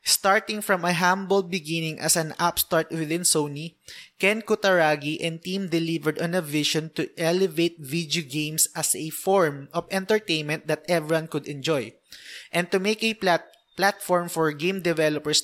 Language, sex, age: Filipino, male, 20-39